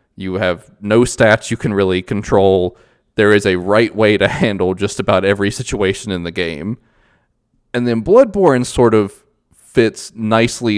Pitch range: 95-120 Hz